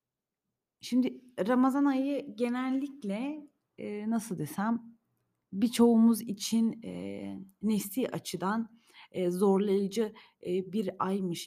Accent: native